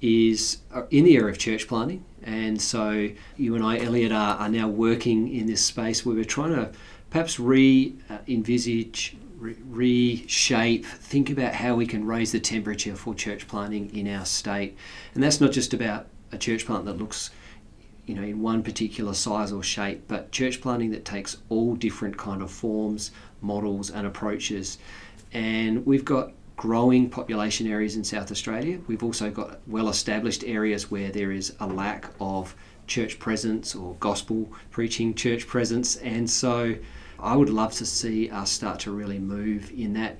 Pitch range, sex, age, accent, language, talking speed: 105-120 Hz, male, 40-59, Australian, English, 170 wpm